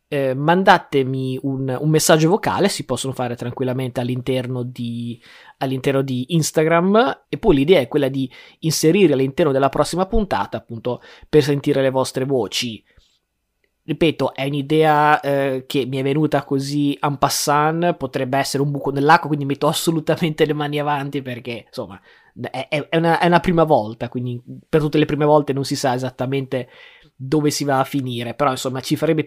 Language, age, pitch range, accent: Italian, 20-39, 130-155 Hz, native